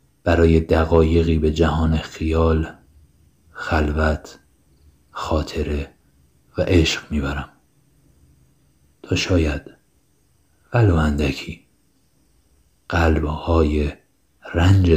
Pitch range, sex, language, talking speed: 70-80 Hz, male, Persian, 65 wpm